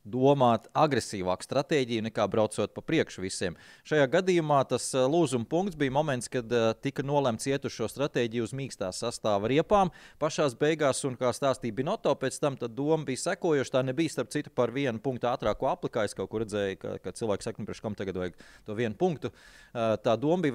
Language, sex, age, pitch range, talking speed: English, male, 30-49, 120-160 Hz, 185 wpm